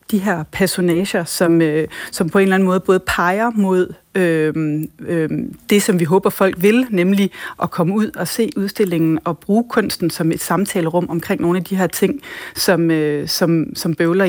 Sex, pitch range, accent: female, 165-200 Hz, native